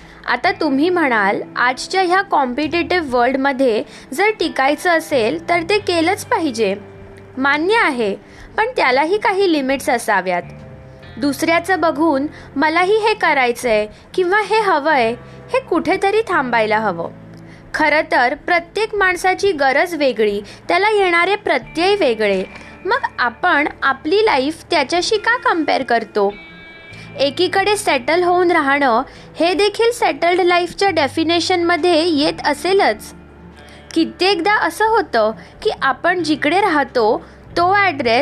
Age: 20-39